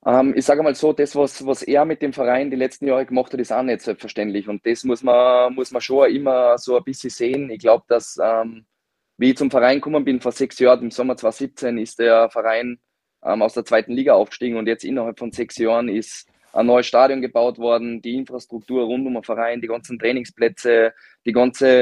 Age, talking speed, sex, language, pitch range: 20-39, 205 wpm, male, German, 115-130 Hz